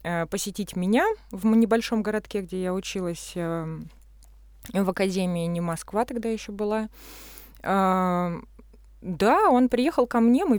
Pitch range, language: 175-215 Hz, Russian